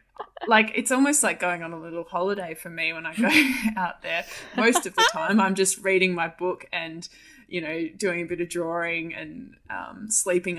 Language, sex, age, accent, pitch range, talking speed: English, female, 20-39, Australian, 165-195 Hz, 205 wpm